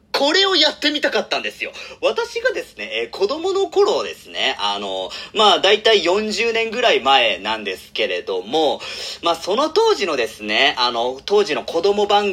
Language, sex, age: Japanese, male, 40-59